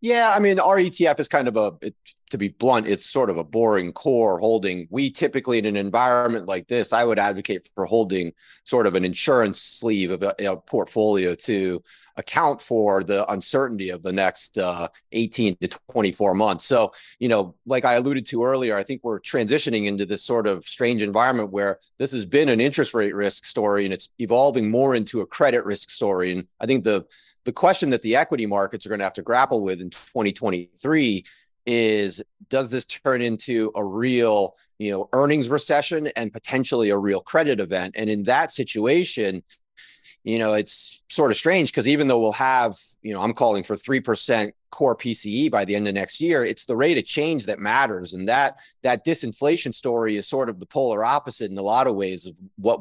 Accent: American